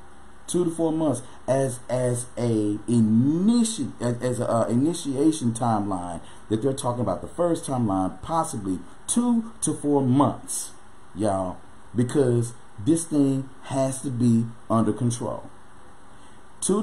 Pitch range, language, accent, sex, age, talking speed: 110-150 Hz, English, American, male, 40-59, 130 wpm